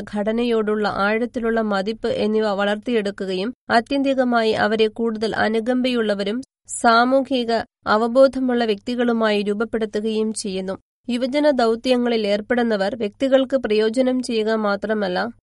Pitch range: 215-245 Hz